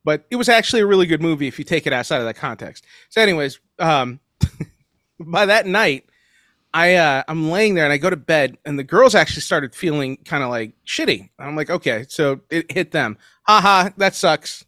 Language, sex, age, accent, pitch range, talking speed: English, male, 30-49, American, 155-225 Hz, 215 wpm